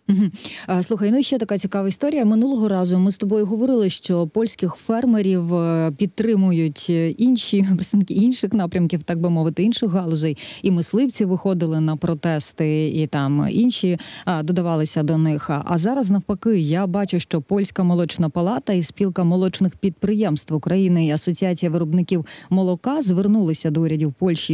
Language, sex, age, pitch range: Ukrainian, female, 30-49, 160-205 Hz